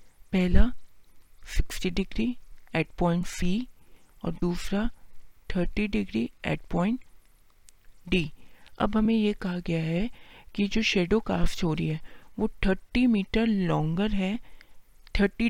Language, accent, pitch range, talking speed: Hindi, native, 160-200 Hz, 125 wpm